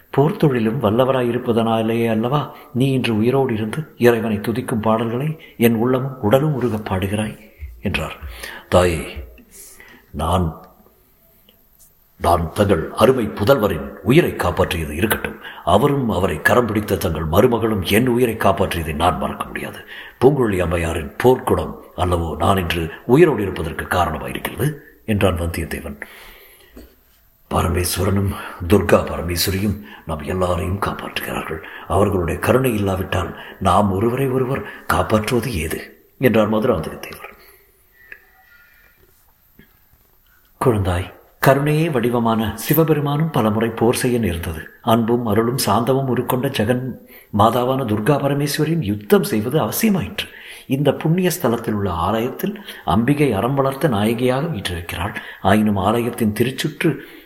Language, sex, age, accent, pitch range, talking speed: Tamil, male, 50-69, native, 95-130 Hz, 100 wpm